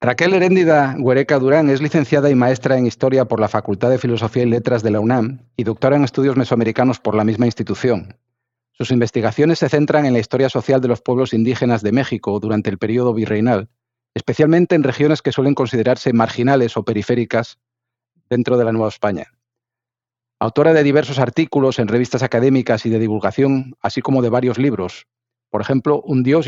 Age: 40-59